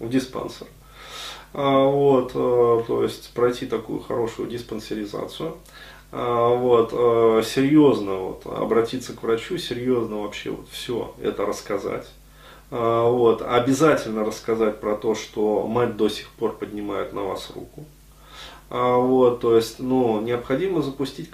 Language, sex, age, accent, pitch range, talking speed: Russian, male, 20-39, native, 110-135 Hz, 115 wpm